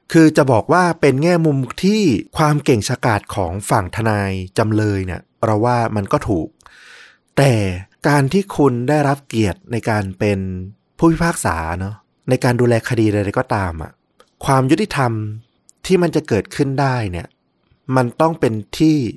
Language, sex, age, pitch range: Thai, male, 30-49, 100-135 Hz